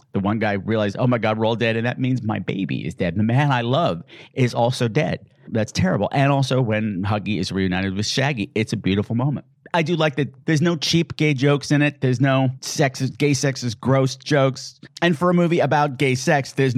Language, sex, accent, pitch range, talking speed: English, male, American, 125-170 Hz, 235 wpm